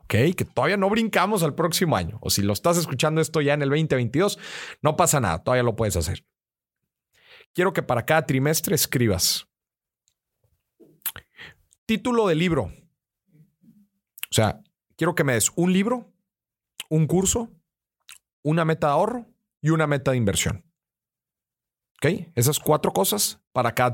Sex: male